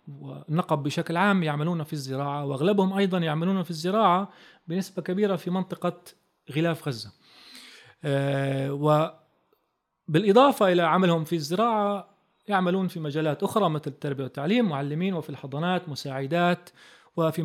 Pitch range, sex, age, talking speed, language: 145-180 Hz, male, 30-49, 120 wpm, Arabic